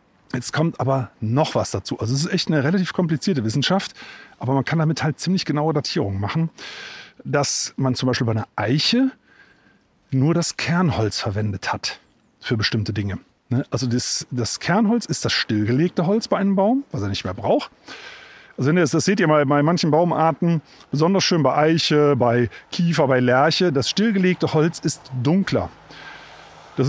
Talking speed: 165 wpm